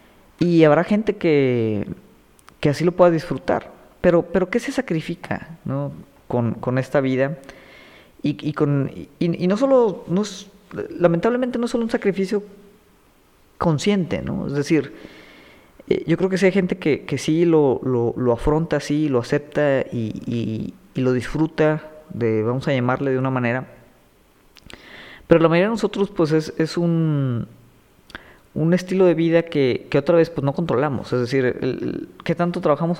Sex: female